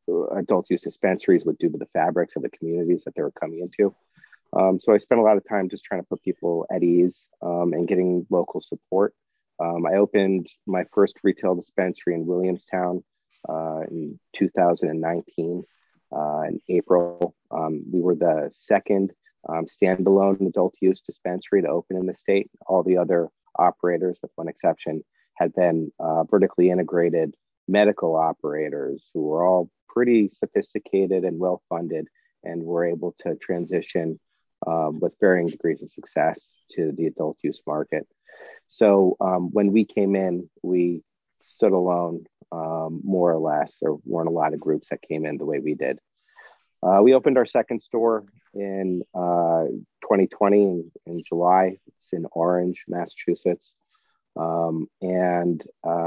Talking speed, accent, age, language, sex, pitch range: 155 wpm, American, 40-59, English, male, 85-95 Hz